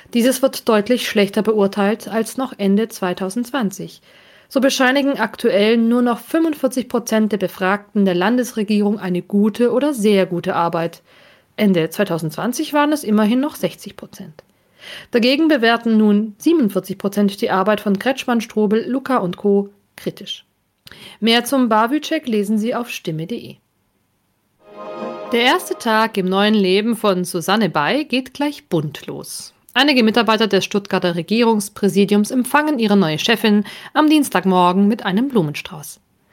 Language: German